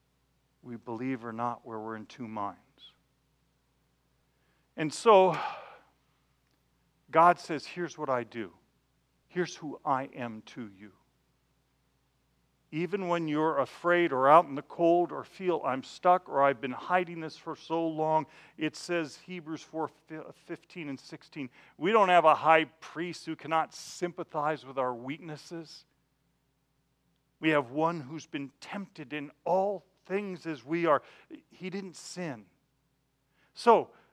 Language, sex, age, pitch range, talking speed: English, male, 50-69, 135-180 Hz, 140 wpm